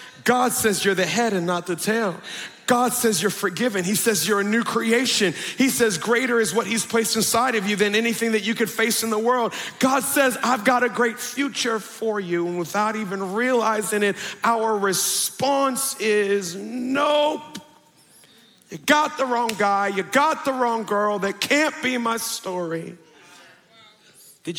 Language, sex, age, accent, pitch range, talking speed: English, male, 40-59, American, 190-240 Hz, 175 wpm